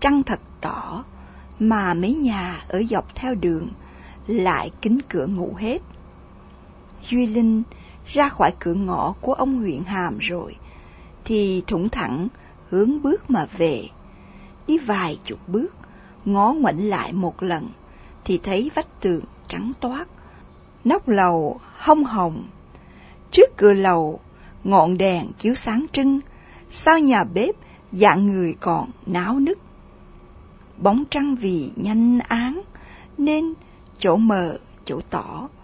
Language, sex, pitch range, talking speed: Vietnamese, female, 200-275 Hz, 130 wpm